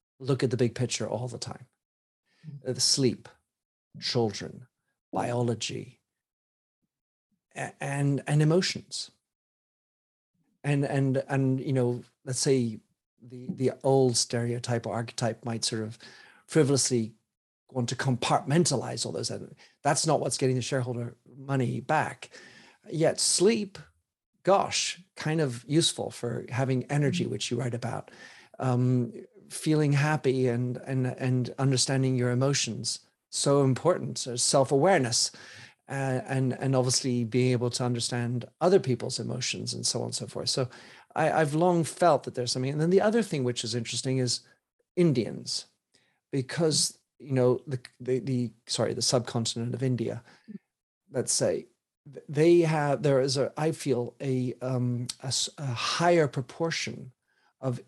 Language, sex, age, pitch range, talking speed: English, male, 40-59, 120-140 Hz, 140 wpm